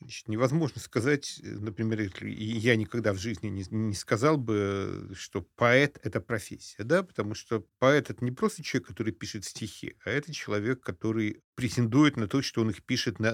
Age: 50-69